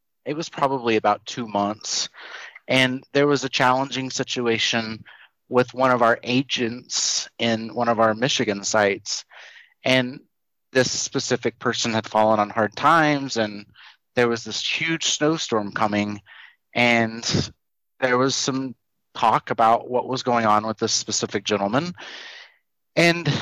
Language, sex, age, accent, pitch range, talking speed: English, male, 30-49, American, 110-130 Hz, 140 wpm